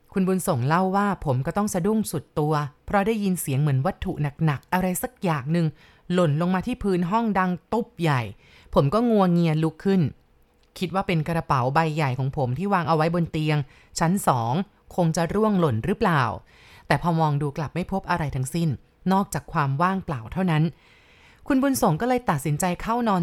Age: 20-39